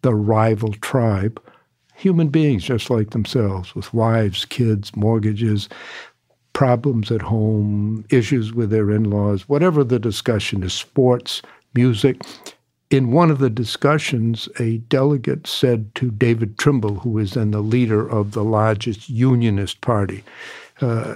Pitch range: 110-130 Hz